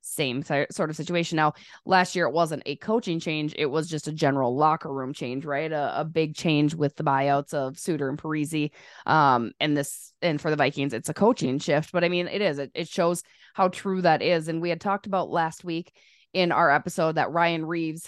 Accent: American